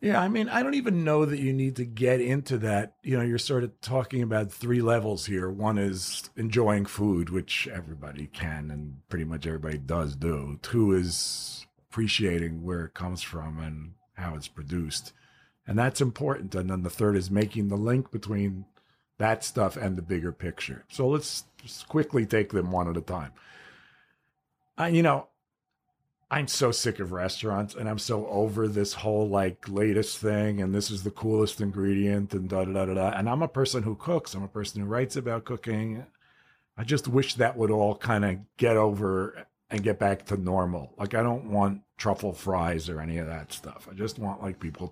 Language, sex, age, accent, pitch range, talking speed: English, male, 50-69, American, 95-120 Hz, 200 wpm